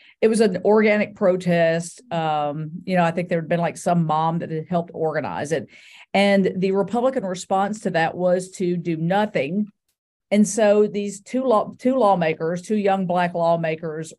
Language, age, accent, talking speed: English, 50-69, American, 180 wpm